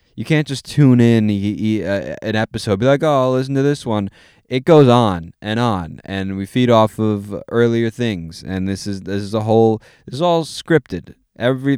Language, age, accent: English, 20-39, American